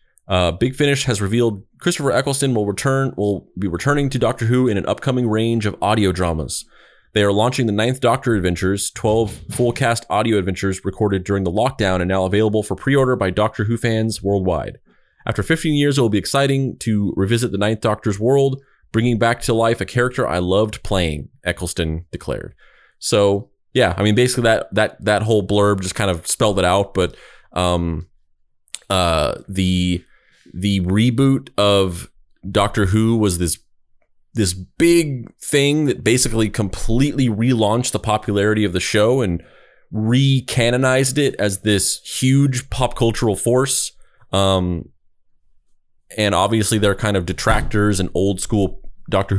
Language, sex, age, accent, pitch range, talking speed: English, male, 20-39, American, 95-120 Hz, 155 wpm